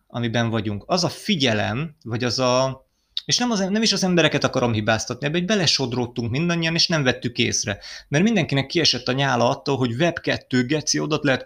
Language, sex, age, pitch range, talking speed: Hungarian, male, 30-49, 115-155 Hz, 195 wpm